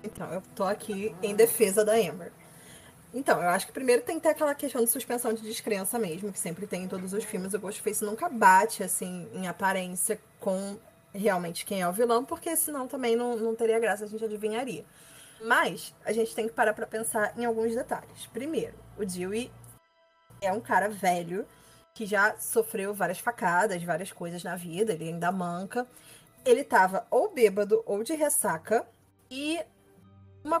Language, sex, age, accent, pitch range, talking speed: Portuguese, female, 20-39, Brazilian, 195-245 Hz, 180 wpm